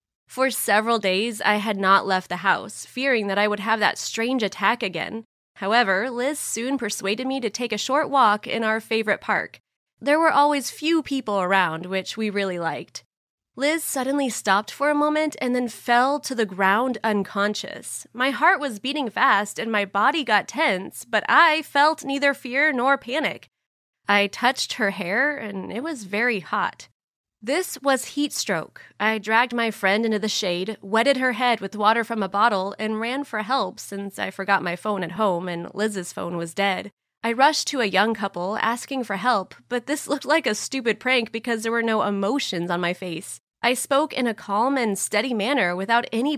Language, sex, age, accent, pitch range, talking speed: English, female, 20-39, American, 200-265 Hz, 195 wpm